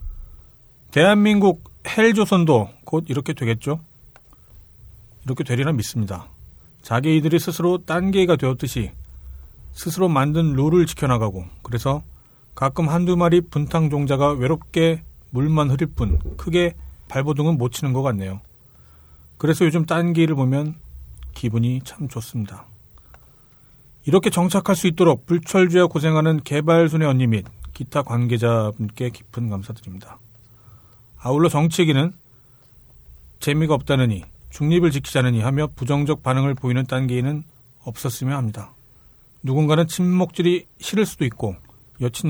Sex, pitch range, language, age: male, 115-160 Hz, Korean, 40-59